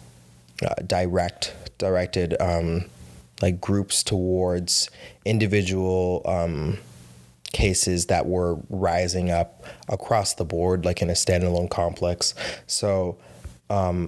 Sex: male